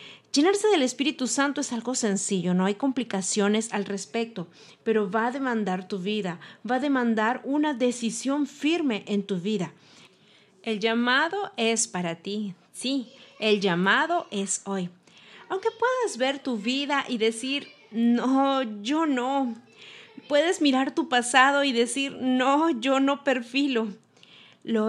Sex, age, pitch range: female, 40-59, 215-275 Hz